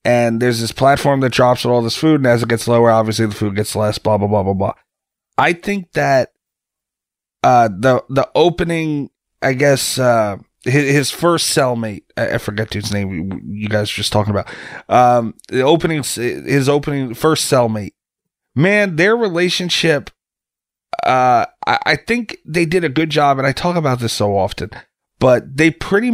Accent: American